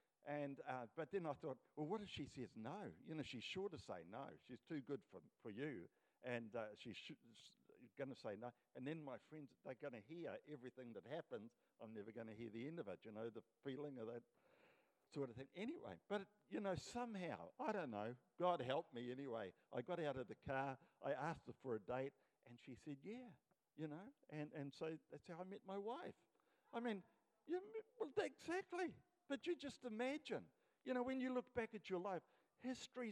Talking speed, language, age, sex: 215 wpm, English, 60-79, male